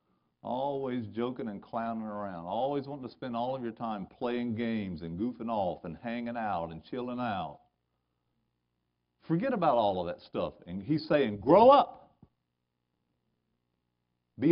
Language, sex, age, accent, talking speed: English, male, 50-69, American, 150 wpm